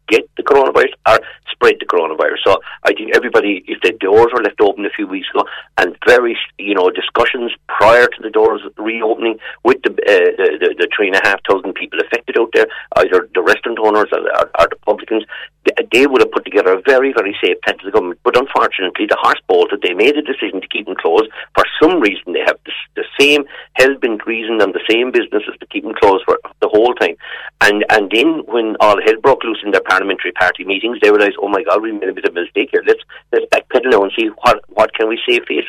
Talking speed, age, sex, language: 240 wpm, 50-69, male, English